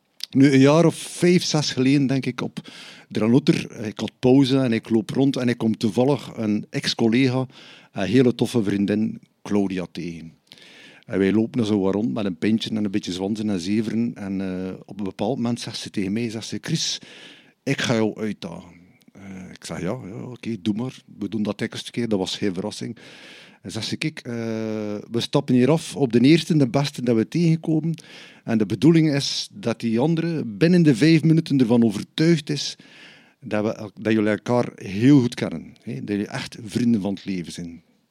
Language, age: Dutch, 50-69